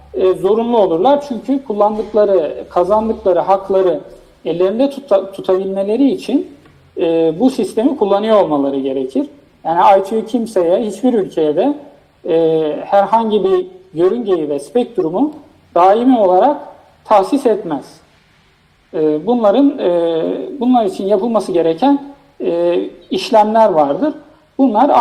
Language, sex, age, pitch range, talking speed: Turkish, male, 50-69, 165-225 Hz, 105 wpm